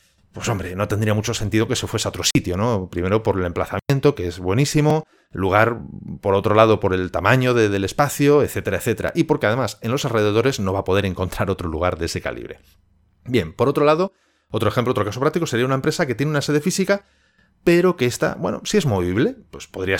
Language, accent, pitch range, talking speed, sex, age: Spanish, Spanish, 95-145 Hz, 220 wpm, male, 30-49